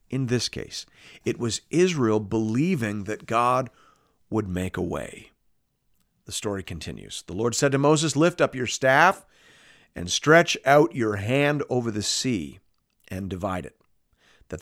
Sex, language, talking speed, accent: male, English, 150 wpm, American